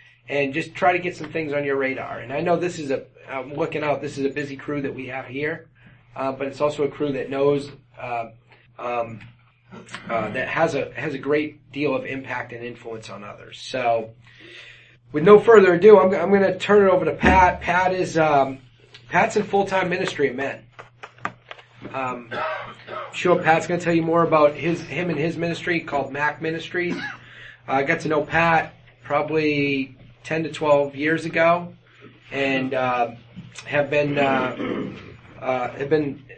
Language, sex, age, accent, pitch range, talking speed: English, male, 30-49, American, 125-155 Hz, 185 wpm